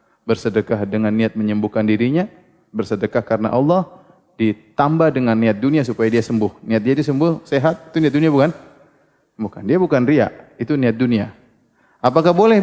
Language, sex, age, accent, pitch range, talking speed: Indonesian, male, 30-49, native, 125-185 Hz, 150 wpm